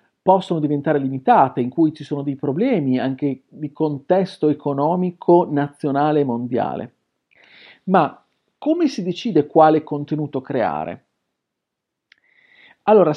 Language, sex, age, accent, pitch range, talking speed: Italian, male, 40-59, native, 140-225 Hz, 110 wpm